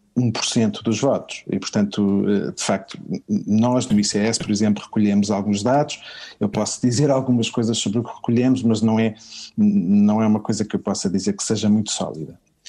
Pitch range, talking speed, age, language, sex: 105-130 Hz, 185 wpm, 50-69, Portuguese, male